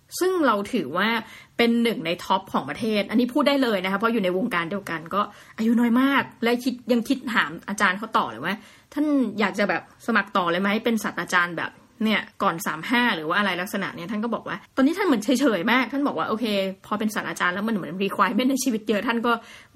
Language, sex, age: Thai, female, 20-39